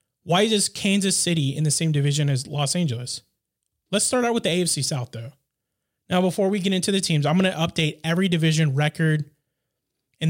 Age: 20-39